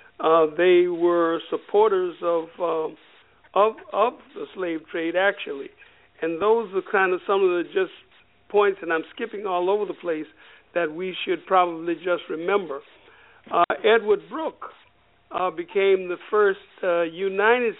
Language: English